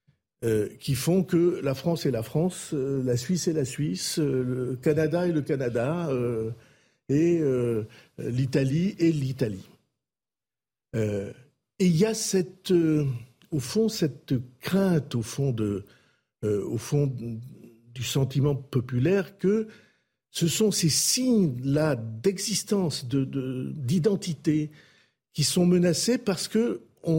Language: French